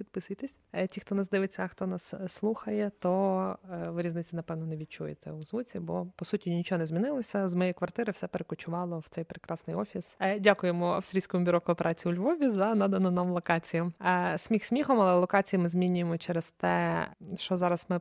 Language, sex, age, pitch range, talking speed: Ukrainian, female, 20-39, 170-200 Hz, 175 wpm